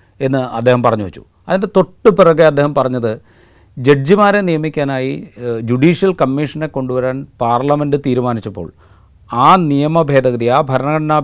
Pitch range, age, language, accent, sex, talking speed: 120-150 Hz, 40-59, Malayalam, native, male, 105 wpm